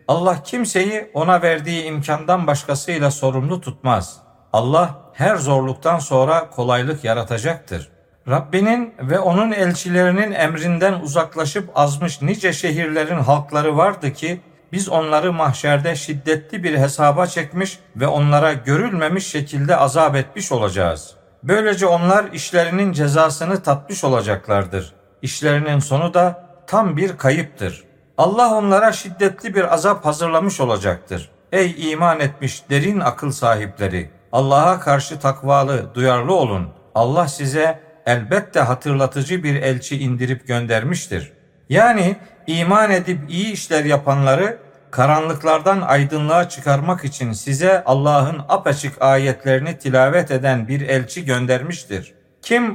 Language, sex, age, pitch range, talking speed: Turkish, male, 50-69, 135-180 Hz, 110 wpm